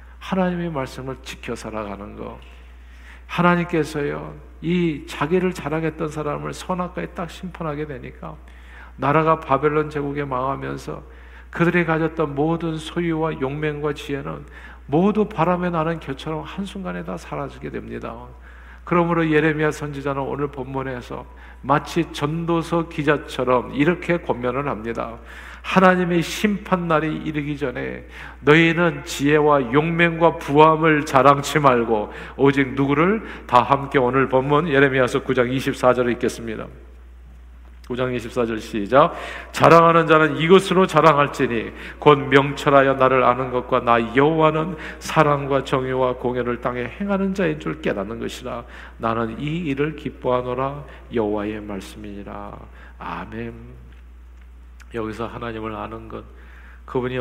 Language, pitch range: Korean, 105-155 Hz